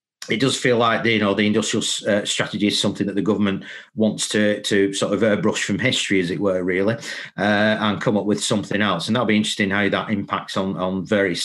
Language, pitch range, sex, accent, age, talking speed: English, 95-110 Hz, male, British, 40-59, 240 wpm